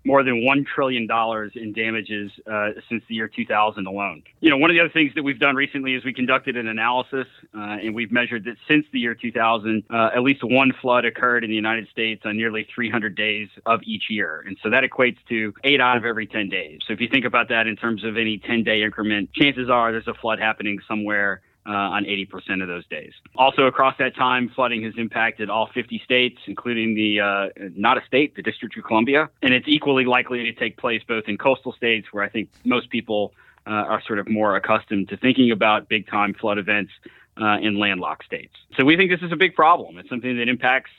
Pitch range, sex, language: 105-125 Hz, male, English